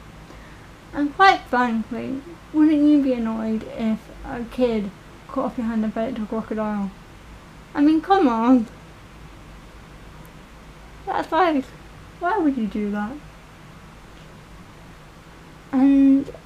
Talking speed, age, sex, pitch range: 115 wpm, 10-29, female, 225-265 Hz